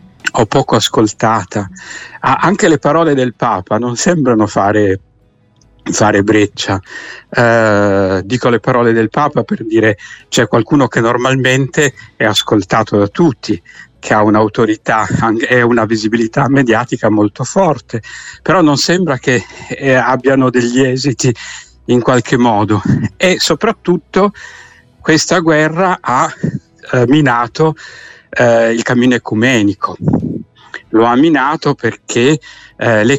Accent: native